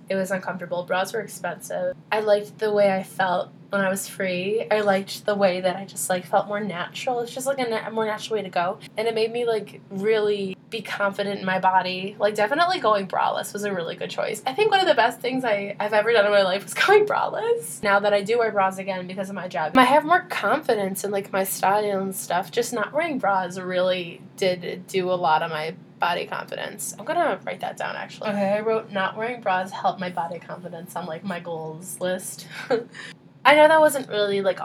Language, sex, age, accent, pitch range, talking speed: English, female, 10-29, American, 185-220 Hz, 230 wpm